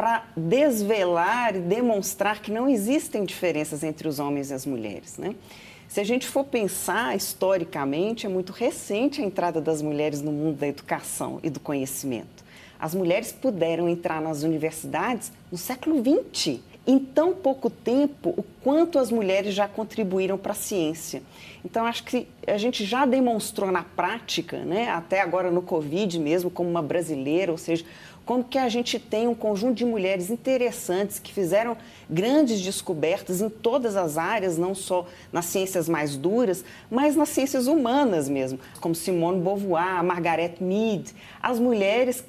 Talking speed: 160 wpm